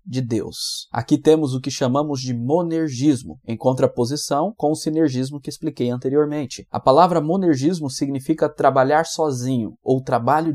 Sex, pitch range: male, 125-160 Hz